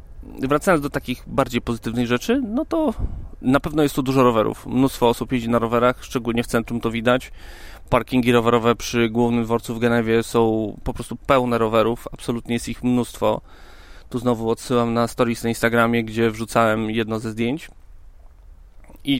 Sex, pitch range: male, 105-125 Hz